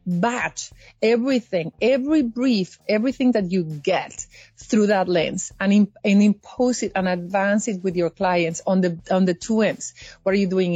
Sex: female